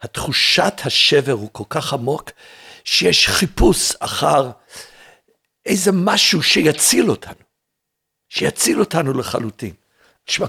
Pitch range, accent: 115-165 Hz, Swiss